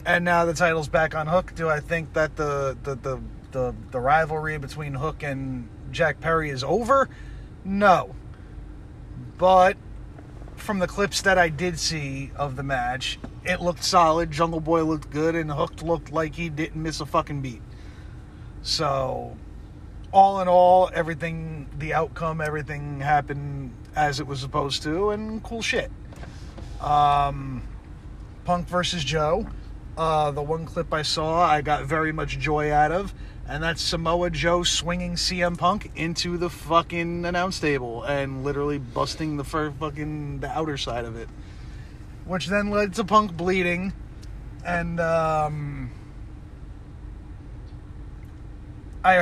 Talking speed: 145 wpm